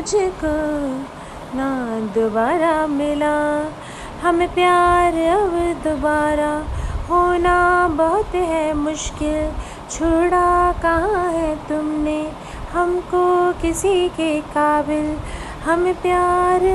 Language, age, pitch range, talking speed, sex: Hindi, 30-49, 305-365 Hz, 75 wpm, female